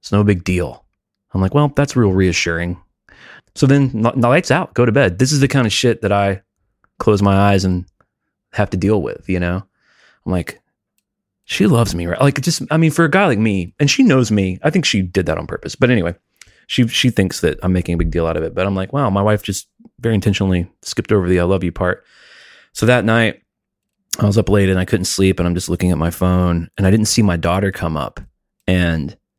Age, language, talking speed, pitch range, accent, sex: 30-49, English, 245 wpm, 90-115 Hz, American, male